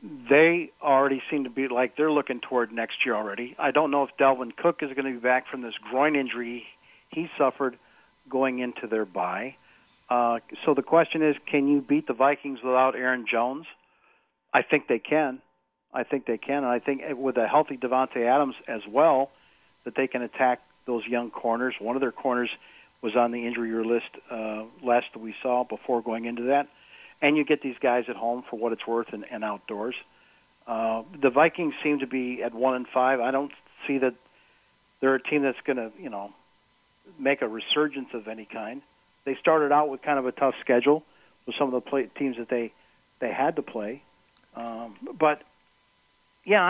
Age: 50-69